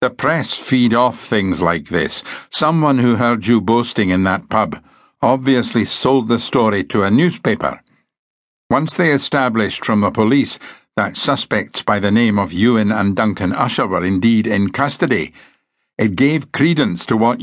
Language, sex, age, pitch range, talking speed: English, male, 60-79, 95-135 Hz, 160 wpm